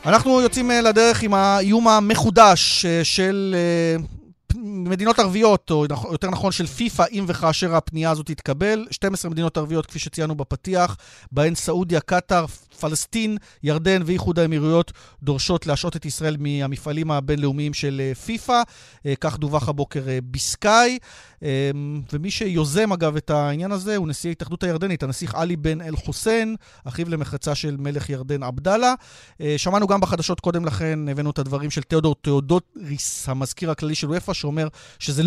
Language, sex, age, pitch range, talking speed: Hebrew, male, 40-59, 140-180 Hz, 140 wpm